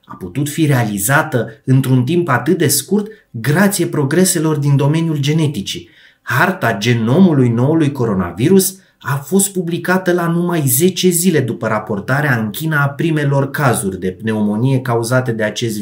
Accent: native